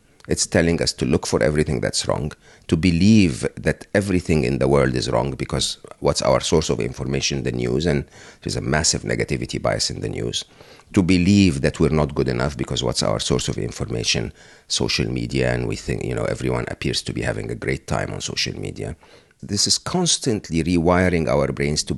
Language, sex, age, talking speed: English, male, 50-69, 200 wpm